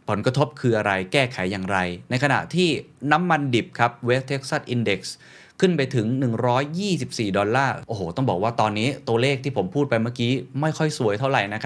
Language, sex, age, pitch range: Thai, male, 20-39, 105-145 Hz